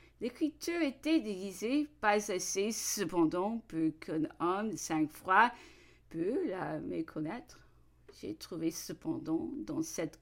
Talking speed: 110 wpm